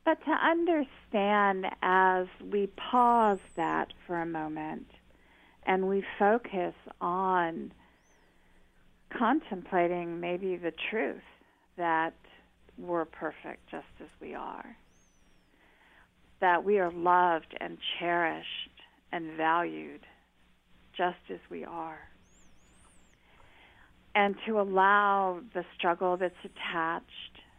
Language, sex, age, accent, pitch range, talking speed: English, female, 50-69, American, 160-195 Hz, 95 wpm